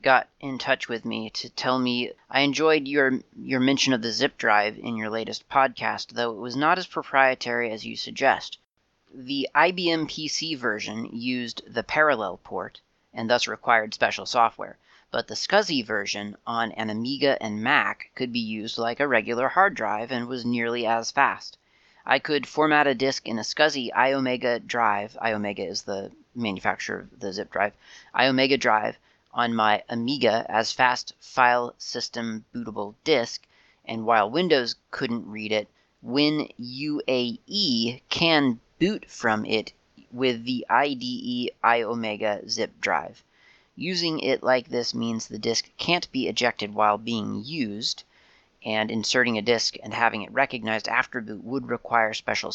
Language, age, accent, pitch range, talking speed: English, 30-49, American, 110-135 Hz, 155 wpm